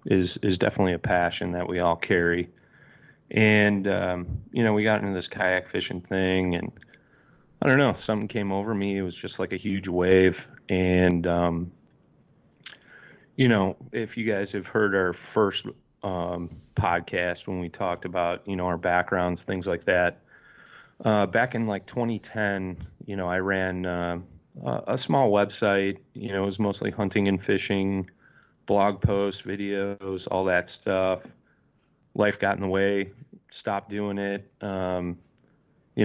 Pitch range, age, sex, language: 90-105 Hz, 30-49, male, English